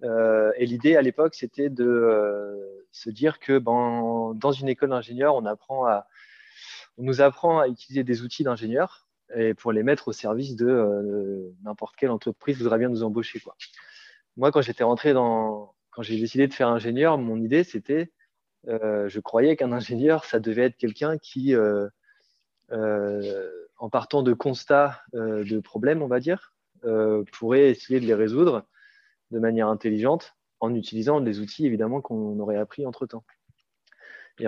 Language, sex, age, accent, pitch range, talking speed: French, male, 20-39, French, 110-140 Hz, 165 wpm